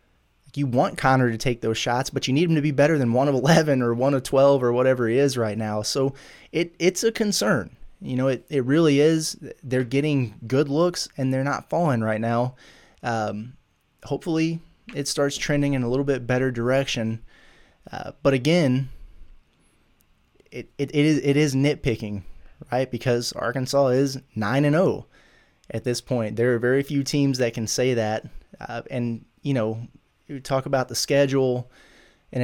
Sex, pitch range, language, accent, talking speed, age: male, 115-140 Hz, English, American, 180 wpm, 20-39